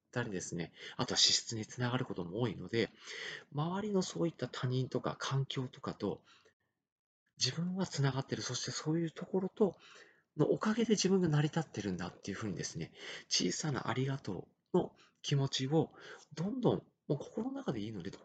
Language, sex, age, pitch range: Japanese, male, 40-59, 120-160 Hz